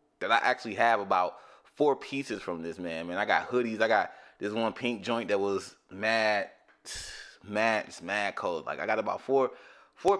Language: English